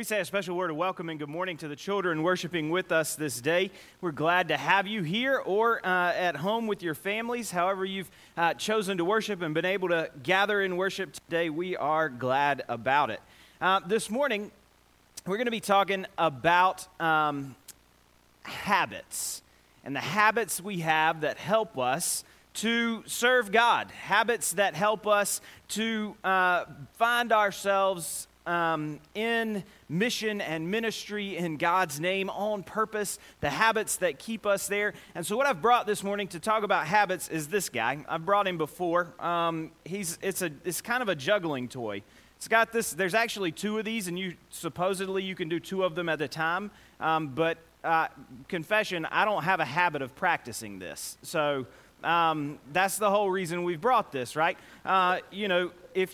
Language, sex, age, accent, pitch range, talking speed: English, male, 30-49, American, 165-210 Hz, 180 wpm